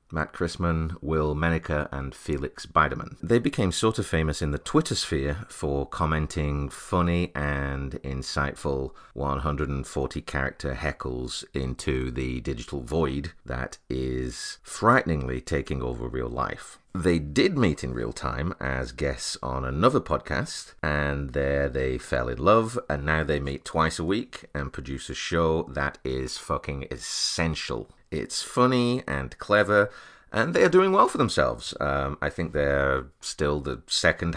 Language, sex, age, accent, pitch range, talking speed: English, male, 30-49, British, 70-80 Hz, 145 wpm